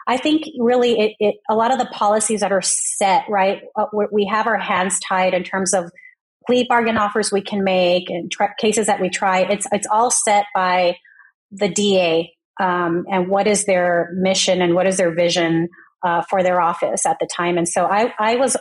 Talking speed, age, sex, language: 205 wpm, 30-49, female, English